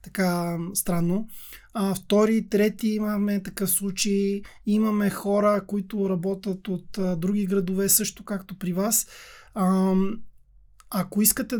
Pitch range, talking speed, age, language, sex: 195-220 Hz, 120 wpm, 20-39, Bulgarian, male